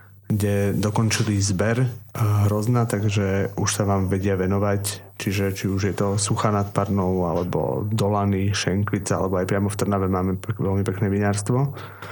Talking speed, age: 155 wpm, 30-49